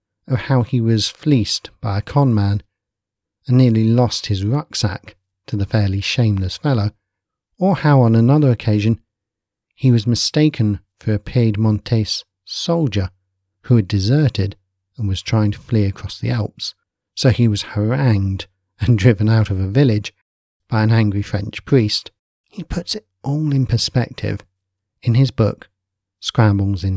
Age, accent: 50-69, British